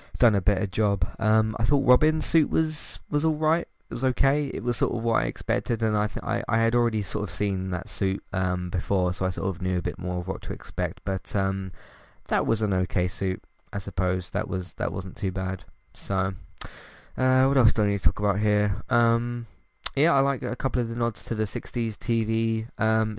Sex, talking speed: male, 230 wpm